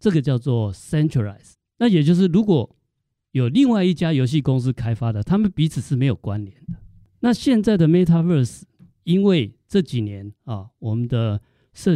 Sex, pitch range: male, 115-160 Hz